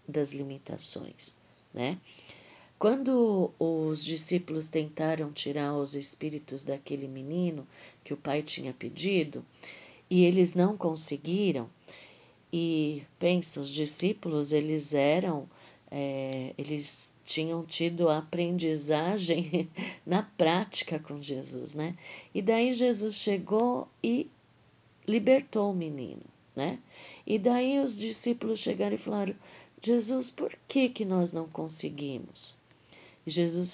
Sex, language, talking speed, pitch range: female, Portuguese, 105 wpm, 150-210 Hz